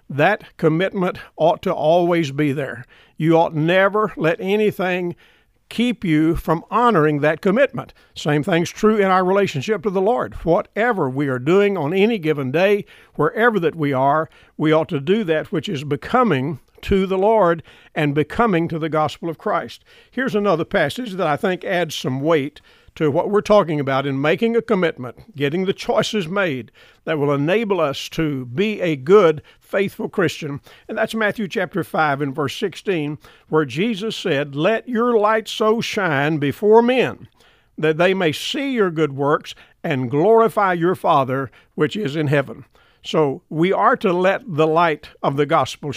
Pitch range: 150-205 Hz